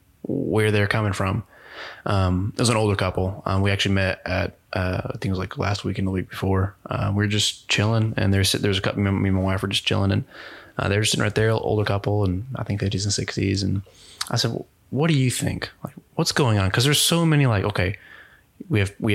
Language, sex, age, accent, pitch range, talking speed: English, male, 20-39, American, 95-110 Hz, 240 wpm